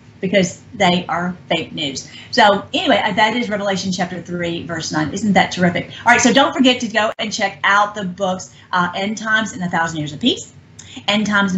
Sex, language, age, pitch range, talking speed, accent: female, English, 40-59, 190-235 Hz, 205 wpm, American